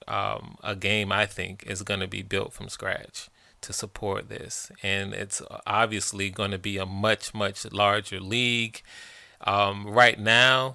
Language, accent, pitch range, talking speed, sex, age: English, American, 100-115 Hz, 160 wpm, male, 30-49